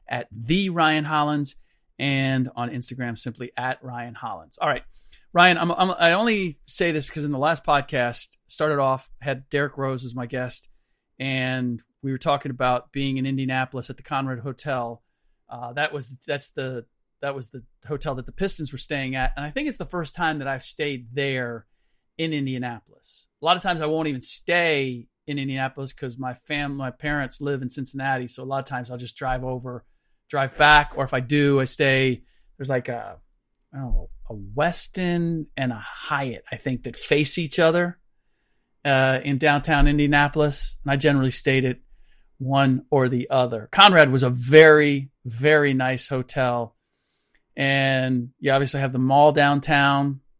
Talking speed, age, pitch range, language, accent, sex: 180 wpm, 40-59, 130-150 Hz, English, American, male